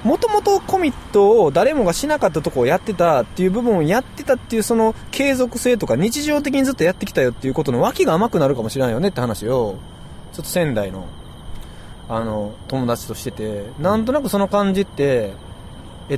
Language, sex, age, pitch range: Japanese, male, 20-39, 120-190 Hz